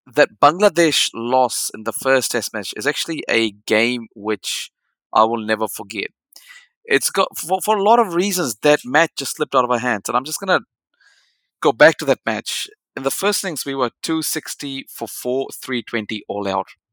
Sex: male